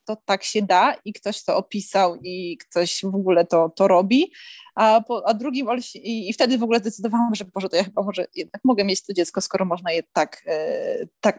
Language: Polish